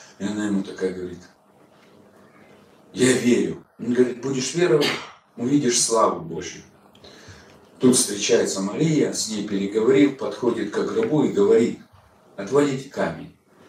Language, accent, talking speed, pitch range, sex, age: Russian, native, 120 wpm, 100-135 Hz, male, 40-59